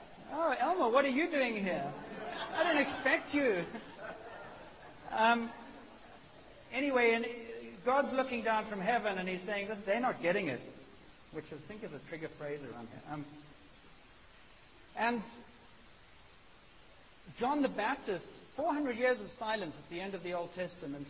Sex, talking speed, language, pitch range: male, 145 wpm, English, 150-220 Hz